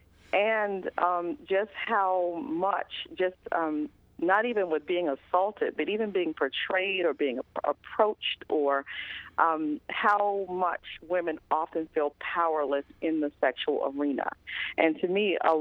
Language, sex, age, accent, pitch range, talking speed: English, female, 40-59, American, 155-195 Hz, 135 wpm